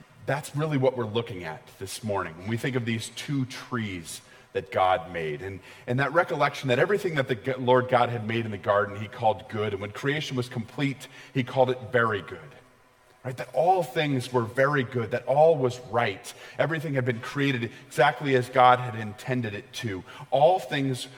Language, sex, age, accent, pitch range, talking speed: English, male, 40-59, American, 120-130 Hz, 200 wpm